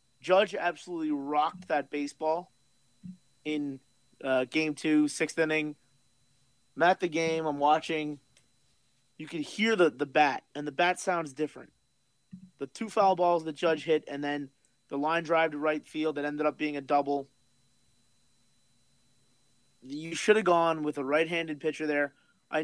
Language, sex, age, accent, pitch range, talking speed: English, male, 30-49, American, 135-165 Hz, 155 wpm